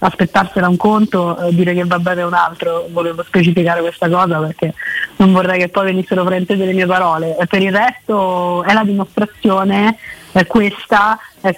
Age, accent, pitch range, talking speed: 20-39, native, 175-215 Hz, 170 wpm